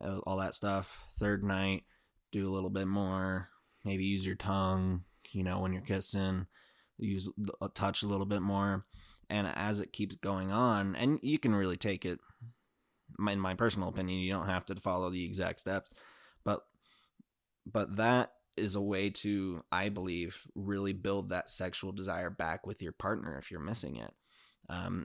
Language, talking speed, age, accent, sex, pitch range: English, 175 wpm, 20-39, American, male, 95-105 Hz